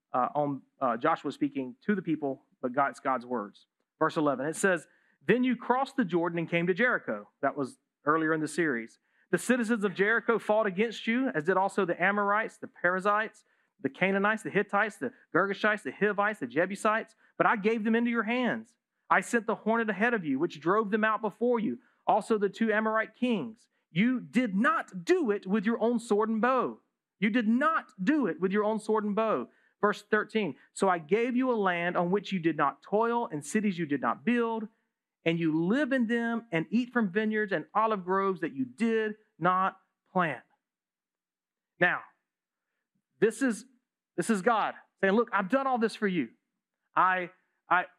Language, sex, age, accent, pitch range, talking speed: English, male, 40-59, American, 185-235 Hz, 195 wpm